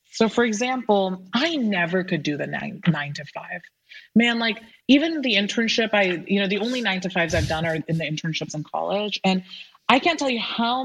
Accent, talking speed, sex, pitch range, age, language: American, 215 wpm, female, 180-255 Hz, 20-39, English